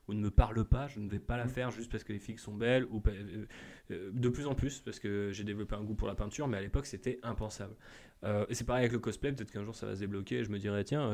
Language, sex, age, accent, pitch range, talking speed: French, male, 20-39, French, 105-120 Hz, 300 wpm